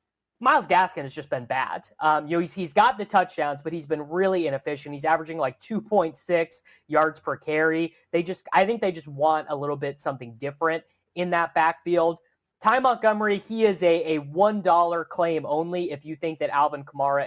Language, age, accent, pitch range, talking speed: English, 20-39, American, 150-185 Hz, 205 wpm